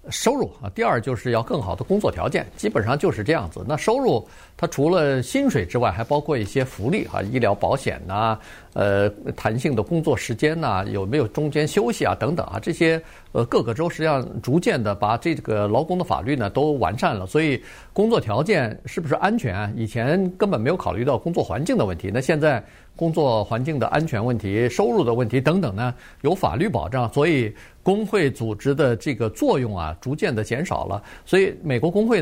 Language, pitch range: Chinese, 110-150 Hz